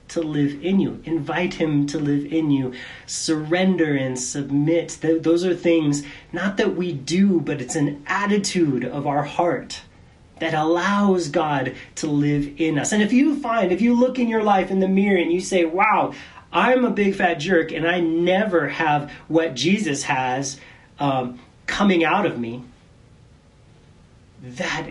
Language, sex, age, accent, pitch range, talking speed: English, male, 30-49, American, 135-170 Hz, 165 wpm